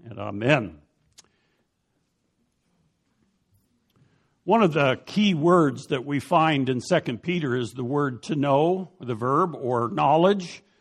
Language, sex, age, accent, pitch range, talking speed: English, male, 60-79, American, 130-175 Hz, 120 wpm